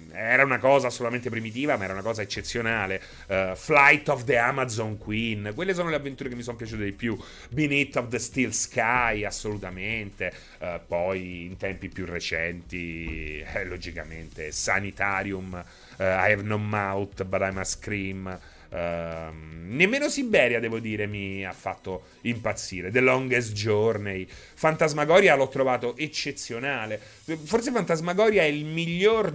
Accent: native